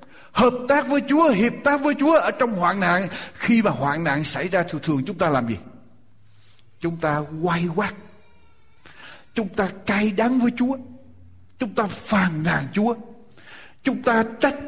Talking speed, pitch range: 170 wpm, 175-255 Hz